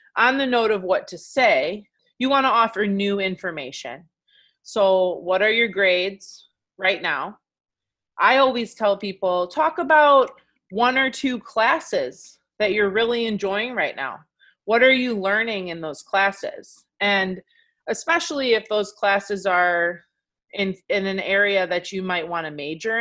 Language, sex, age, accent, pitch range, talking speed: English, female, 30-49, American, 190-240 Hz, 155 wpm